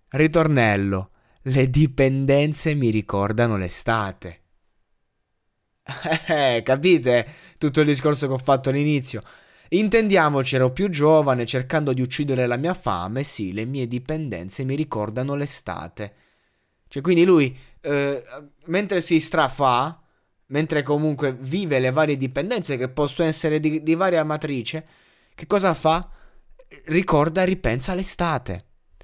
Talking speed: 120 wpm